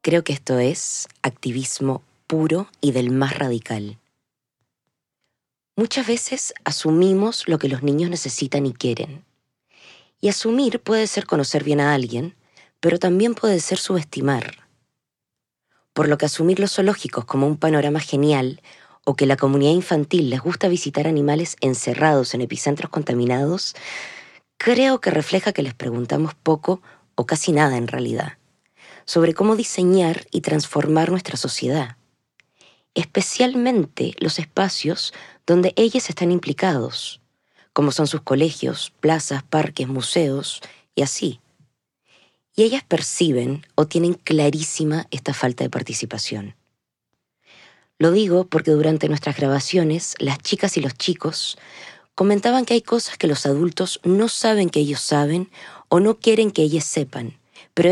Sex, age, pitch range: female, 20-39, 140-185 Hz